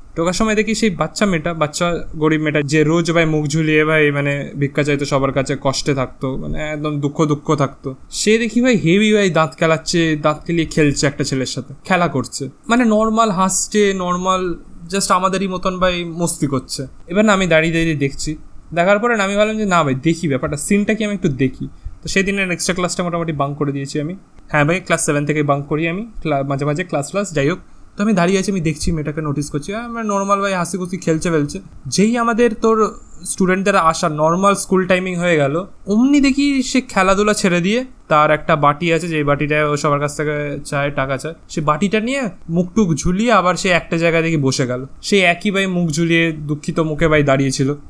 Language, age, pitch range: Bengali, 20-39, 150-195 Hz